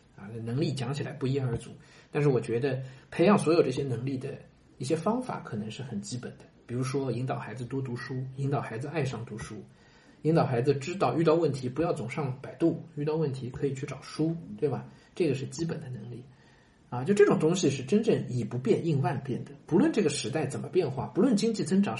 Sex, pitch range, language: male, 125-160 Hz, Chinese